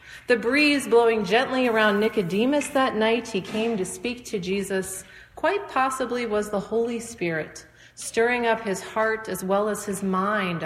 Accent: American